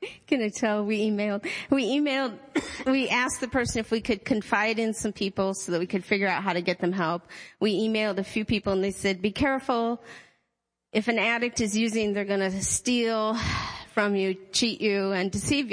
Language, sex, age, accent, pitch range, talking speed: English, female, 40-59, American, 190-240 Hz, 200 wpm